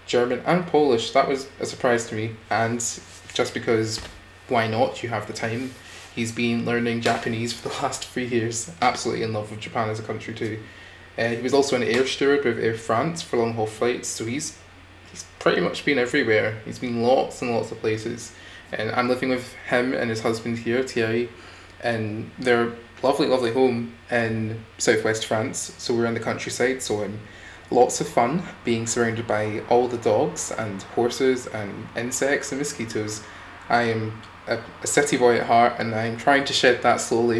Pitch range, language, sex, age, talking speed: 110-125 Hz, English, male, 20-39, 190 wpm